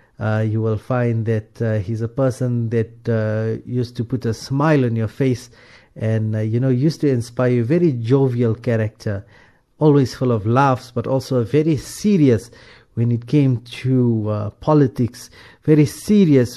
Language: English